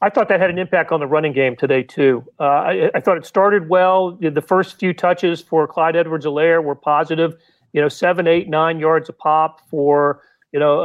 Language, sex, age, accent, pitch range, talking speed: English, male, 40-59, American, 150-180 Hz, 215 wpm